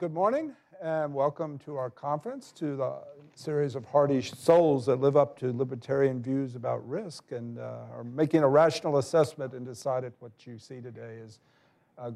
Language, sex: English, male